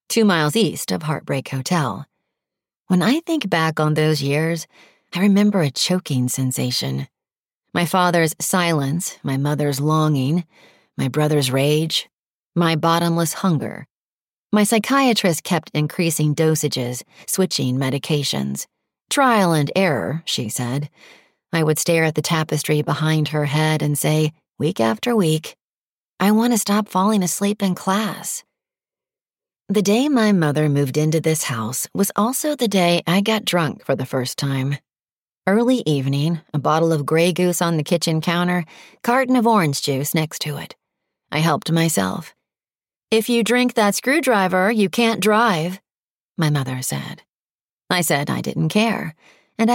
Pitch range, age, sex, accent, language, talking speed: 150-195 Hz, 40-59, female, American, English, 145 wpm